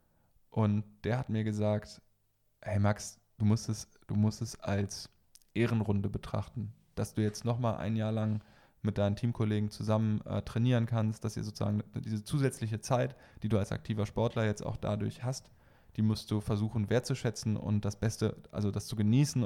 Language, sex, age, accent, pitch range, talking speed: German, male, 10-29, German, 105-115 Hz, 170 wpm